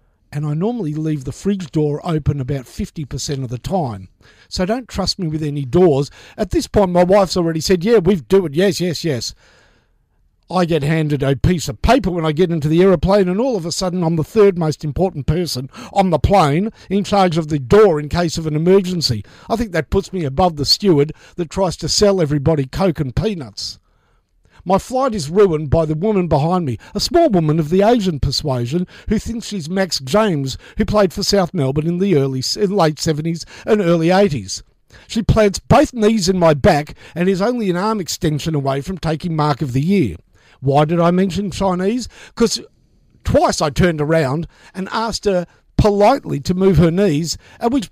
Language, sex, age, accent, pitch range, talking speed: English, male, 50-69, Australian, 150-195 Hz, 205 wpm